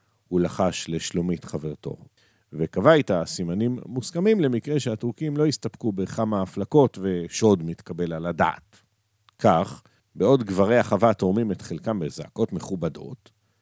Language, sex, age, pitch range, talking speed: Hebrew, male, 50-69, 100-155 Hz, 120 wpm